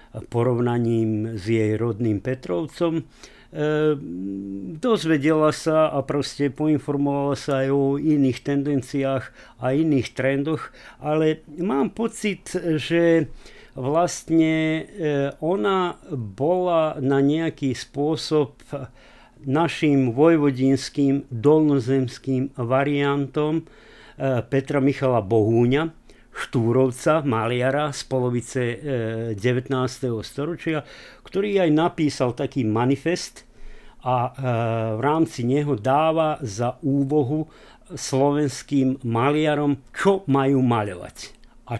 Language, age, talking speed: Slovak, 50-69, 85 wpm